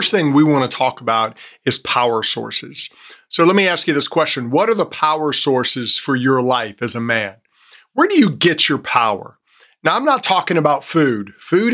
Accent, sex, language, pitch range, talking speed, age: American, male, English, 140-175 Hz, 205 wpm, 50-69